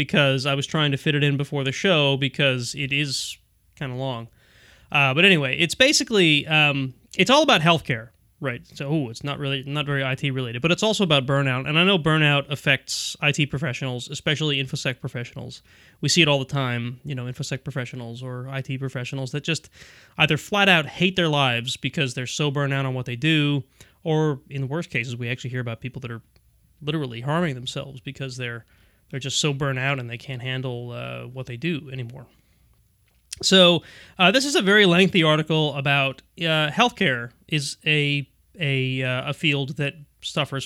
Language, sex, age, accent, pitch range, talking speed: English, male, 20-39, American, 130-155 Hz, 195 wpm